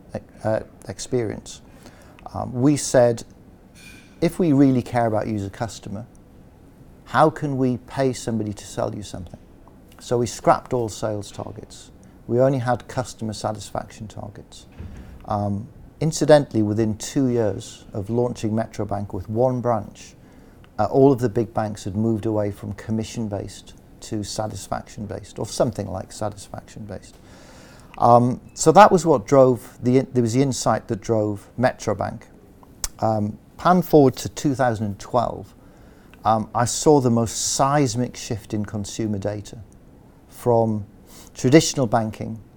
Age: 50-69